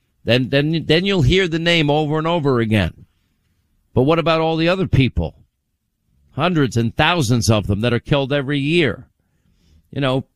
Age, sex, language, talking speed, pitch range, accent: 50-69, male, English, 175 wpm, 120-150 Hz, American